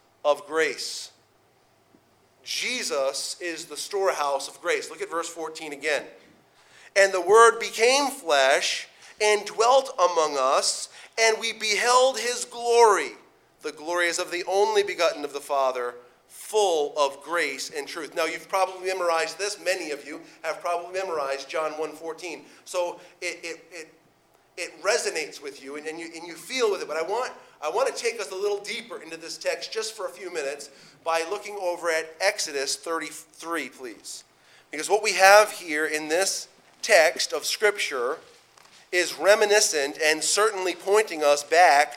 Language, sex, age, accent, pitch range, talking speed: English, male, 40-59, American, 155-215 Hz, 165 wpm